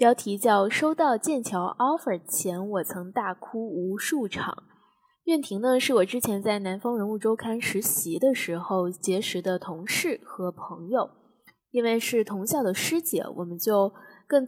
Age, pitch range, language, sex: 10-29, 195-255 Hz, Chinese, female